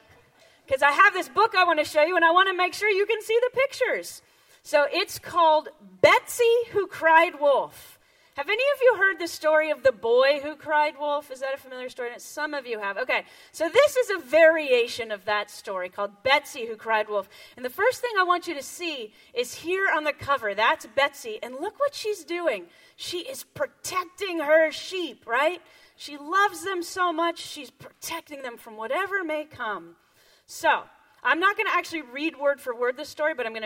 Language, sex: English, female